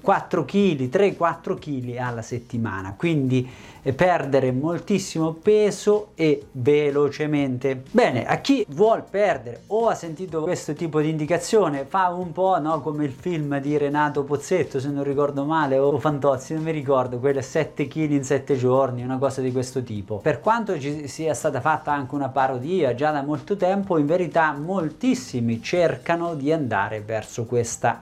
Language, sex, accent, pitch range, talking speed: Italian, male, native, 135-170 Hz, 165 wpm